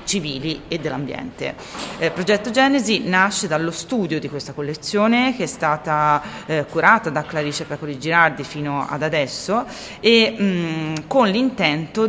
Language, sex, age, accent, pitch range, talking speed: Italian, female, 30-49, native, 150-195 Hz, 135 wpm